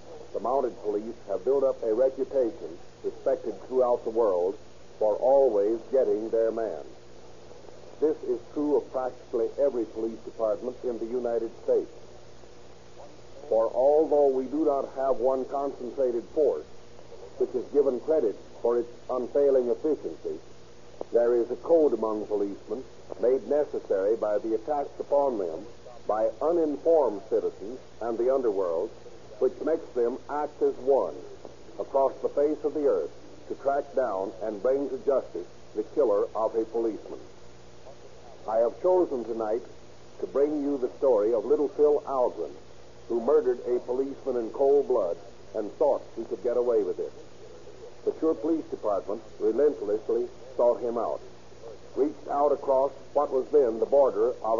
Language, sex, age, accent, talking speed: English, male, 50-69, American, 145 wpm